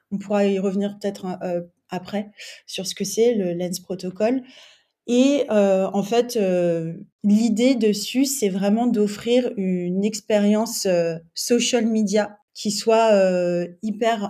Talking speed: 135 wpm